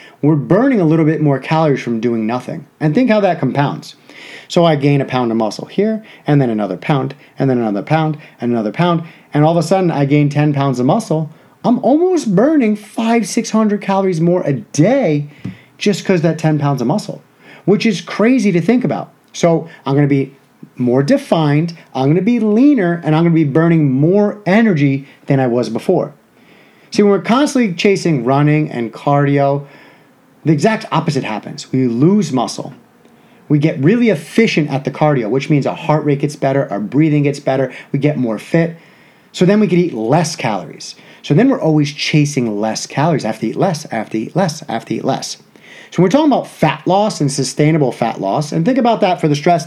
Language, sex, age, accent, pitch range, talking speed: English, male, 30-49, American, 140-190 Hz, 205 wpm